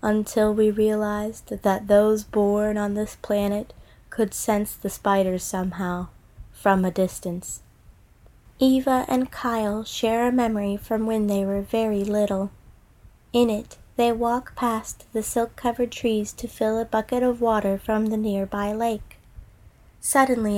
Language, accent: English, American